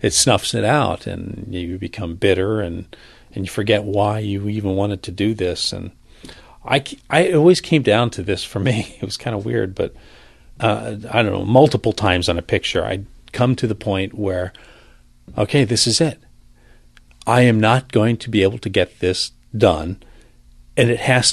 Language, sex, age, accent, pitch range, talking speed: English, male, 40-59, American, 90-125 Hz, 190 wpm